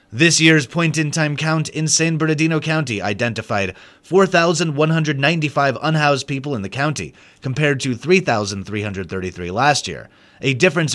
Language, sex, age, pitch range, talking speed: English, male, 30-49, 105-165 Hz, 120 wpm